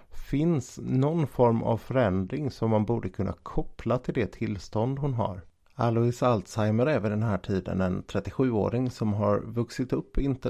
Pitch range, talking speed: 100-125 Hz, 165 wpm